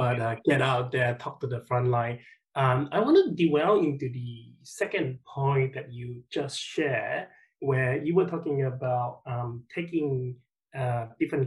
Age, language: 20-39, English